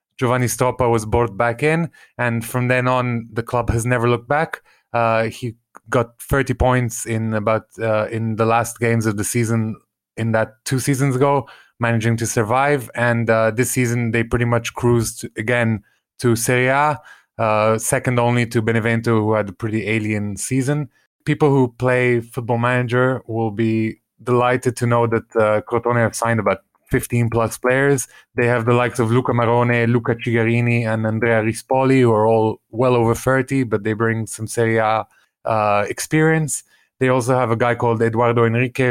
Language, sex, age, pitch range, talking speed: English, male, 20-39, 115-125 Hz, 175 wpm